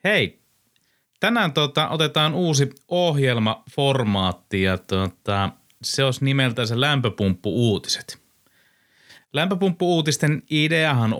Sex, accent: male, native